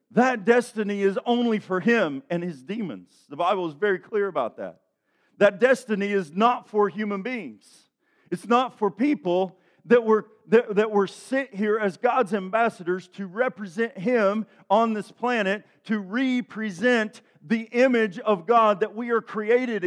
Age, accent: 50-69, American